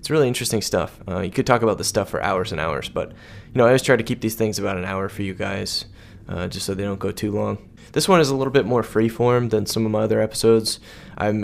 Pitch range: 100-115 Hz